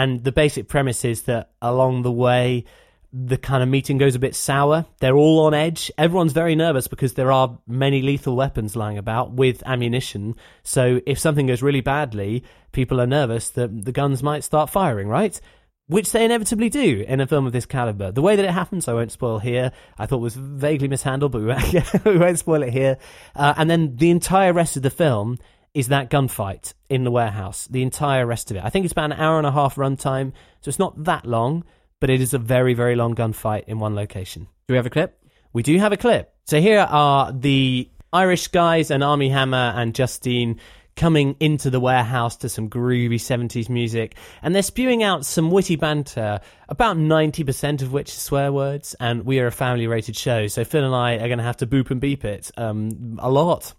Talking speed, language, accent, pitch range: 215 wpm, English, British, 120-150 Hz